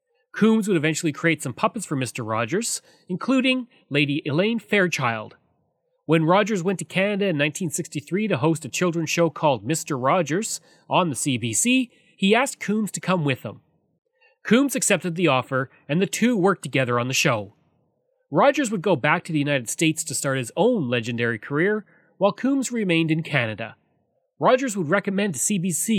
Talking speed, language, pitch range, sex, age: 170 wpm, English, 145-200 Hz, male, 30-49